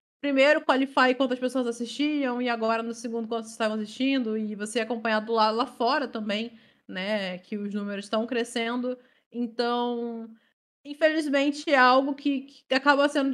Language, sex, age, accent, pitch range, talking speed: Portuguese, female, 20-39, Brazilian, 230-275 Hz, 150 wpm